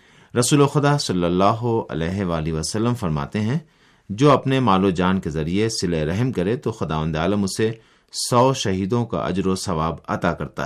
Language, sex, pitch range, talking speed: Urdu, male, 90-120 Hz, 170 wpm